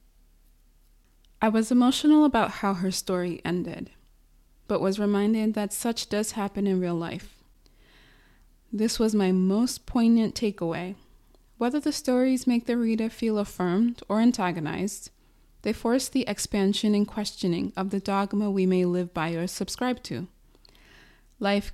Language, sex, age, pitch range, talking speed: English, female, 20-39, 185-225 Hz, 140 wpm